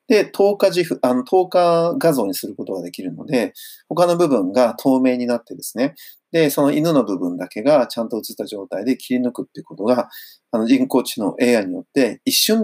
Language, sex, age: Japanese, male, 40-59